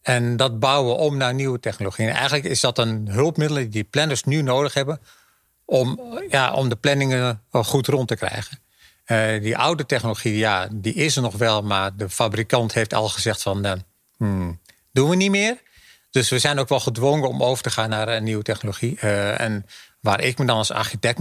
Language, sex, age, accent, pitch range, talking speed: Dutch, male, 40-59, Dutch, 110-135 Hz, 205 wpm